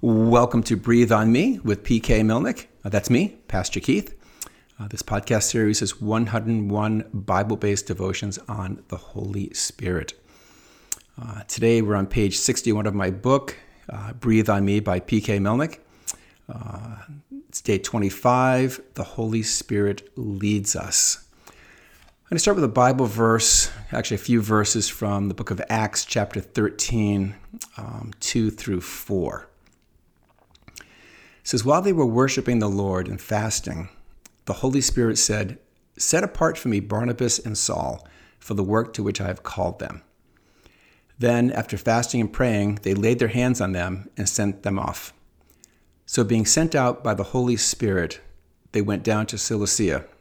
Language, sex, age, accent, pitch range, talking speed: English, male, 50-69, American, 100-120 Hz, 155 wpm